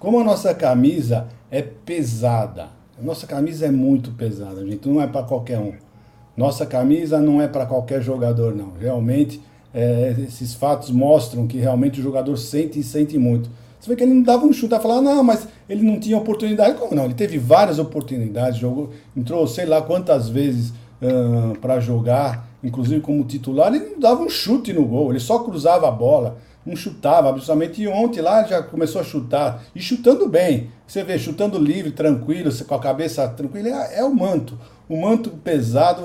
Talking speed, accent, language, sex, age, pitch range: 190 wpm, Brazilian, Portuguese, male, 50-69, 125-175 Hz